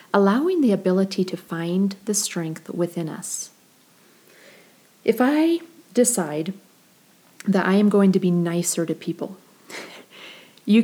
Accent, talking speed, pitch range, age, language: American, 120 wpm, 175-225 Hz, 40-59, English